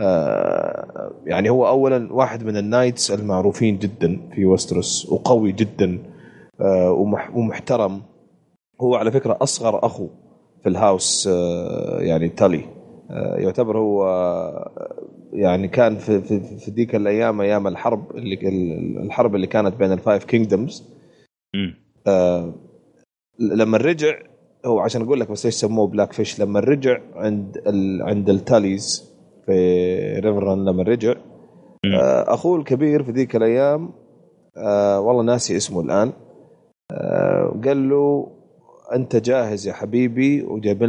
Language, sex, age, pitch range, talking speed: Arabic, male, 30-49, 100-120 Hz, 120 wpm